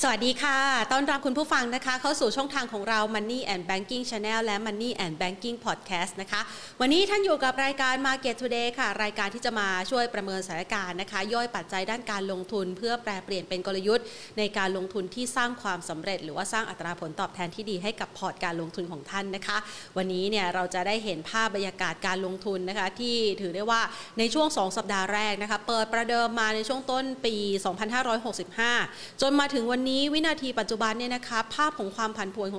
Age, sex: 30-49, female